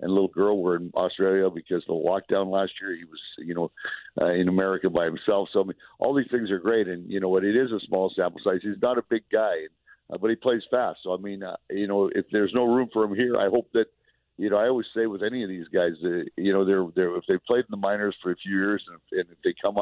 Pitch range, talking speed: 95-105 Hz, 290 wpm